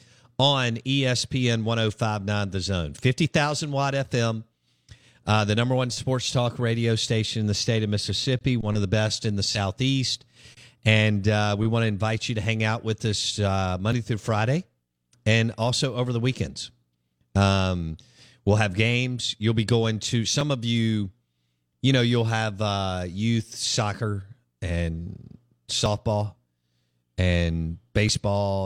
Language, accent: English, American